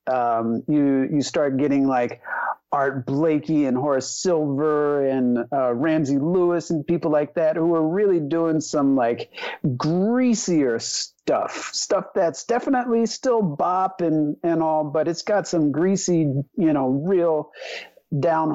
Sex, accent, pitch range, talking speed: male, American, 140-175 Hz, 140 wpm